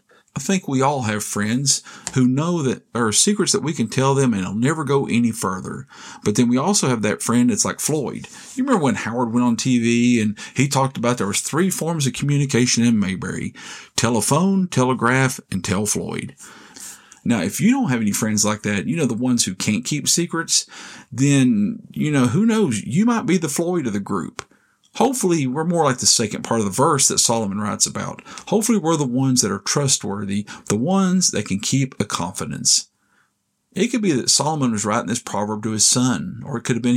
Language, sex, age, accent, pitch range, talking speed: English, male, 40-59, American, 115-170 Hz, 215 wpm